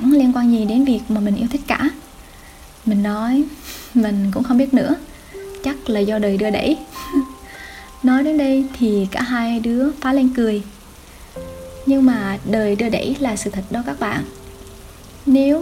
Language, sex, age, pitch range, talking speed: Vietnamese, female, 10-29, 210-265 Hz, 175 wpm